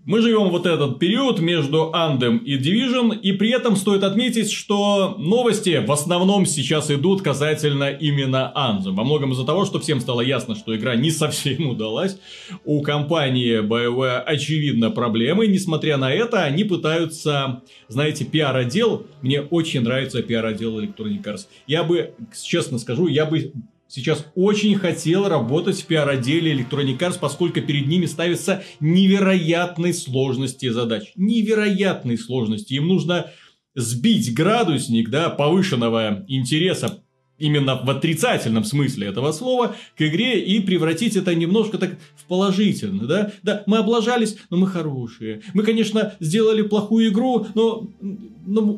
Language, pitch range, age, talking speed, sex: Russian, 135-195 Hz, 30-49, 140 wpm, male